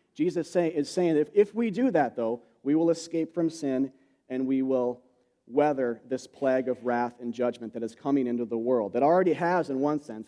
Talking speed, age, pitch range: 210 wpm, 40-59, 130-185 Hz